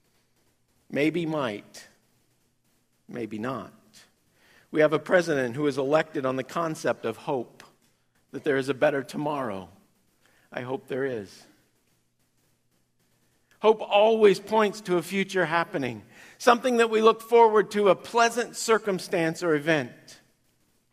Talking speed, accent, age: 125 wpm, American, 50-69